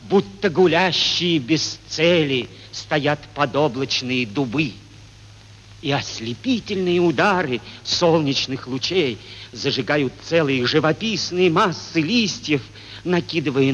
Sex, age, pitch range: male, 50-69, 105-160 Hz